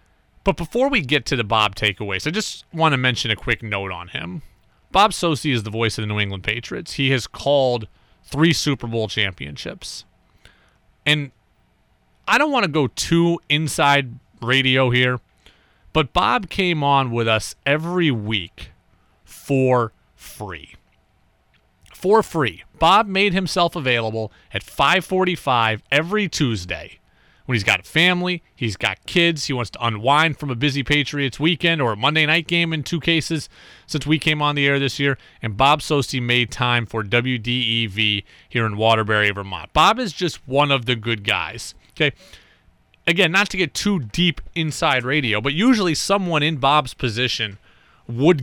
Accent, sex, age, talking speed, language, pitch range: American, male, 30-49, 165 wpm, English, 110-160 Hz